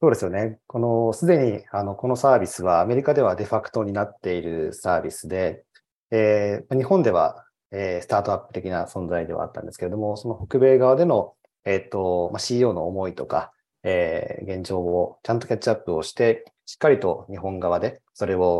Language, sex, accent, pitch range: Japanese, male, native, 90-125 Hz